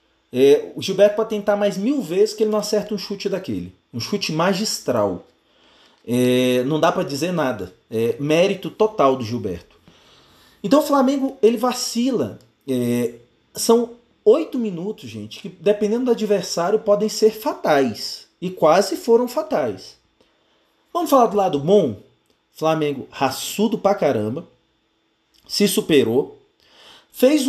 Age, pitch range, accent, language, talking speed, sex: 40-59, 160-230 Hz, Brazilian, Portuguese, 125 wpm, male